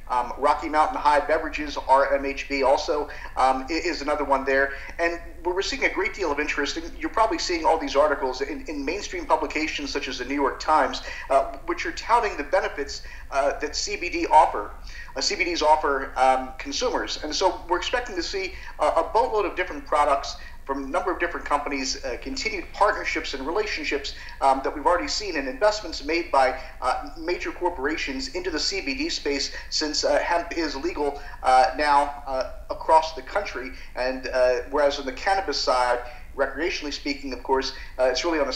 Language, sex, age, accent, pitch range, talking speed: English, male, 50-69, American, 135-180 Hz, 185 wpm